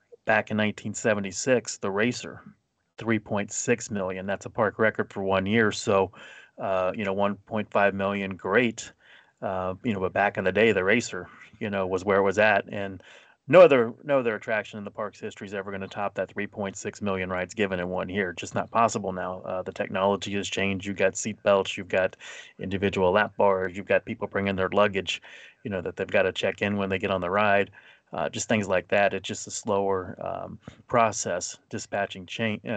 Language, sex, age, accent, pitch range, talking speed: English, male, 30-49, American, 95-110 Hz, 205 wpm